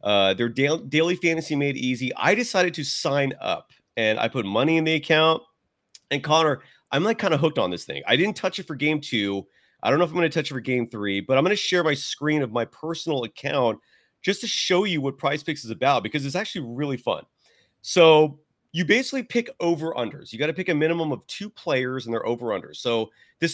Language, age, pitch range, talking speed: English, 30-49, 125-170 Hz, 235 wpm